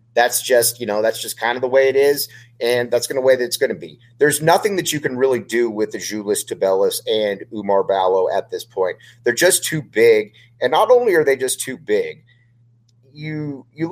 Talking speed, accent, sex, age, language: 220 wpm, American, male, 30-49, English